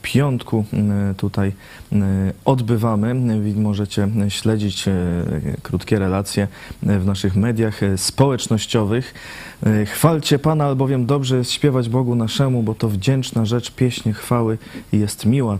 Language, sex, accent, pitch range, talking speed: Polish, male, native, 95-110 Hz, 105 wpm